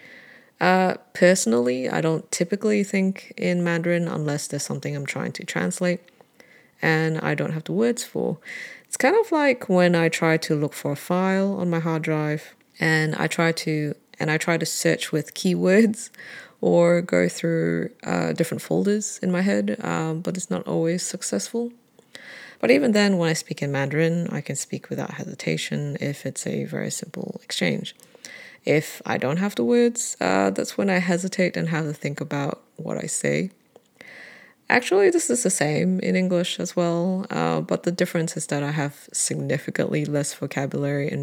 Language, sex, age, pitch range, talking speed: English, female, 30-49, 145-195 Hz, 180 wpm